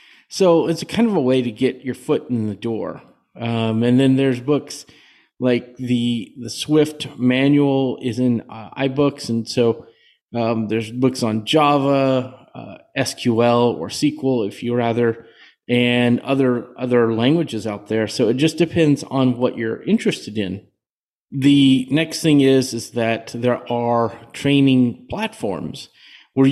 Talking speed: 155 wpm